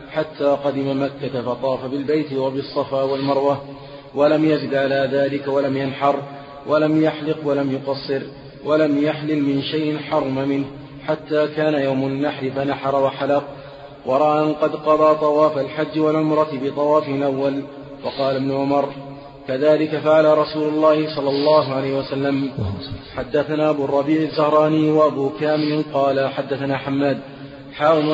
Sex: male